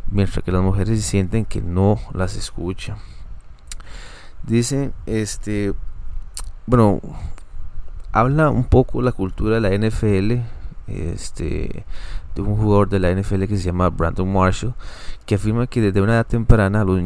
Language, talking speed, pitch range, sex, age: Spanish, 150 wpm, 90-110 Hz, male, 30-49